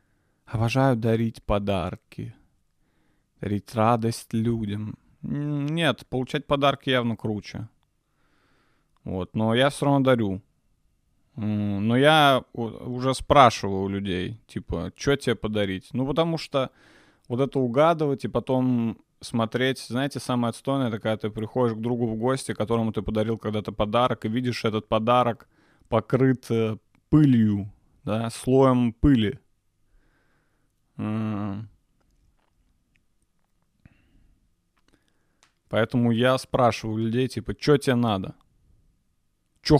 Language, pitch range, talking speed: Russian, 105-130 Hz, 105 wpm